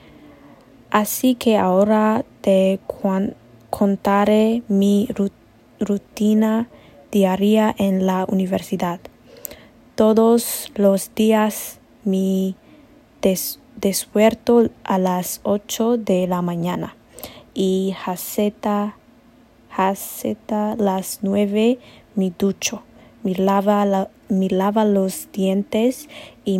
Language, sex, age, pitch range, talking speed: English, female, 20-39, 185-215 Hz, 90 wpm